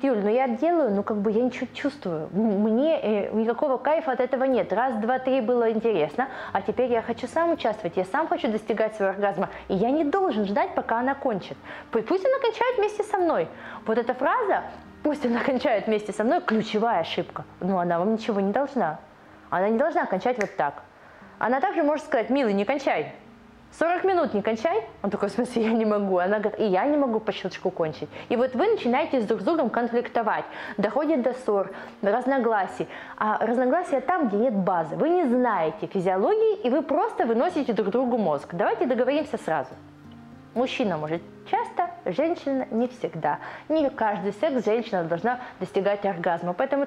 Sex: female